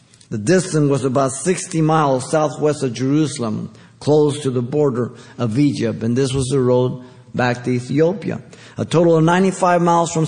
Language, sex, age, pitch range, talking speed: English, male, 50-69, 130-200 Hz, 170 wpm